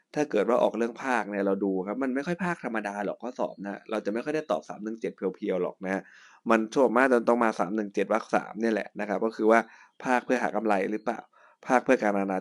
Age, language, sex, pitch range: 20-39, Thai, male, 100-115 Hz